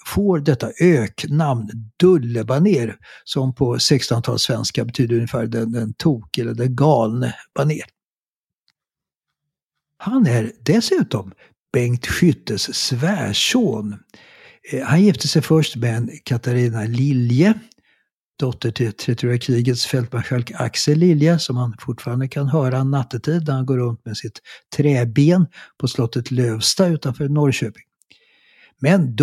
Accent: native